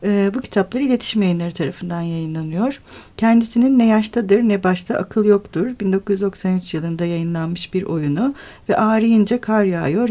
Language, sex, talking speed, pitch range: Turkish, female, 135 wpm, 195-240 Hz